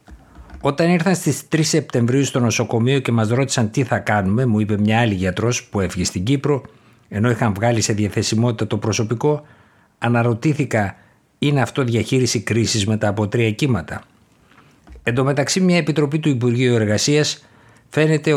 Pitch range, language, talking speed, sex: 110-130 Hz, Greek, 145 wpm, male